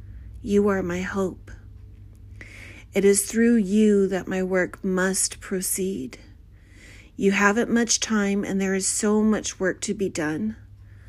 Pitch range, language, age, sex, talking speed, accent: 150-200 Hz, English, 40-59, female, 140 wpm, American